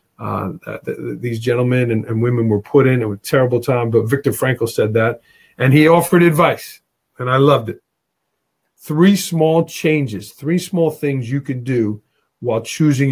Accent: American